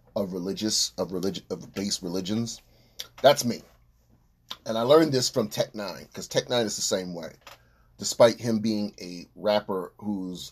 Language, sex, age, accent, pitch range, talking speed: English, male, 30-49, American, 85-115 Hz, 165 wpm